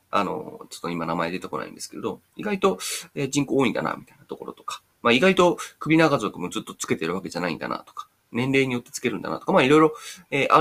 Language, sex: Japanese, male